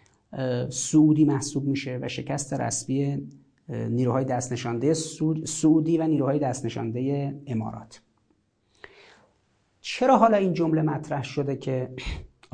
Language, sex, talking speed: Persian, male, 105 wpm